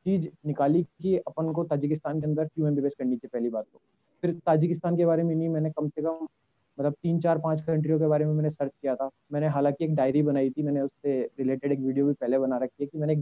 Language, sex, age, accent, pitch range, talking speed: Hindi, male, 20-39, native, 140-165 Hz, 260 wpm